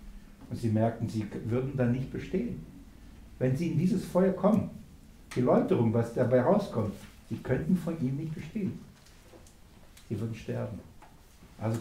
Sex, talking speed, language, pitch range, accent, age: male, 145 wpm, German, 120-185 Hz, German, 60-79